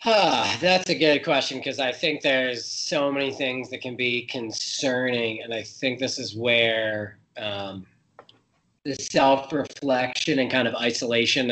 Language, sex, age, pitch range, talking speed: English, male, 20-39, 115-140 Hz, 155 wpm